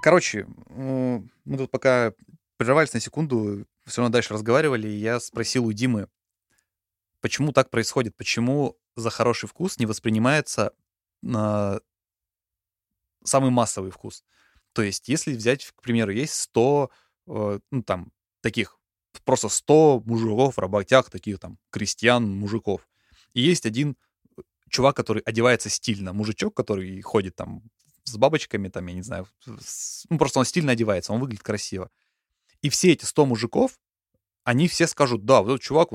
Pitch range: 105-130 Hz